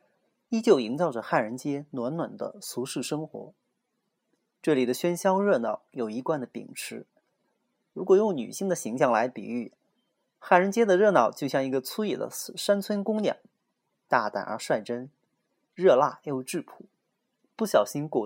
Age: 30-49